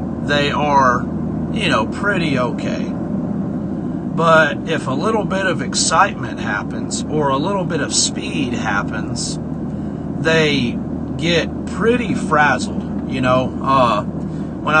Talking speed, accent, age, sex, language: 120 wpm, American, 40-59, male, English